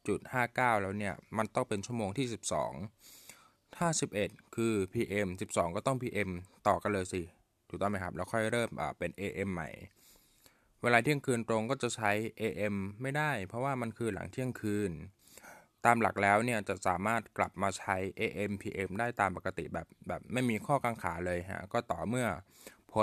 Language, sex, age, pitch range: Thai, male, 20-39, 95-120 Hz